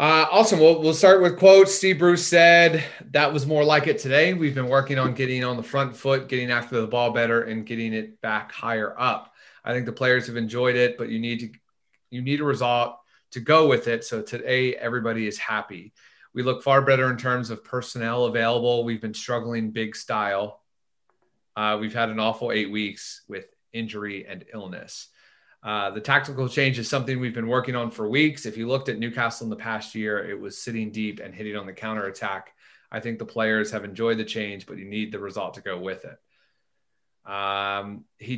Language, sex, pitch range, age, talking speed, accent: English, male, 110-130 Hz, 30-49, 210 wpm, American